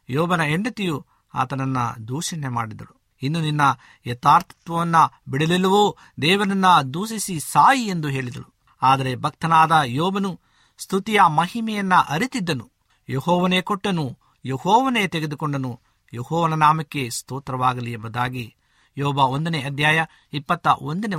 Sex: male